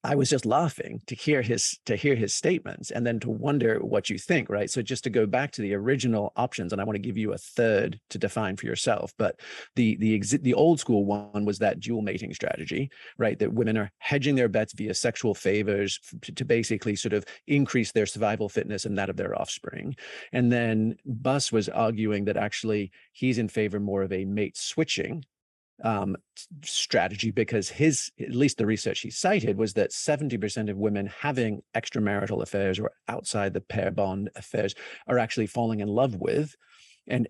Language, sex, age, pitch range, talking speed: English, male, 40-59, 105-125 Hz, 195 wpm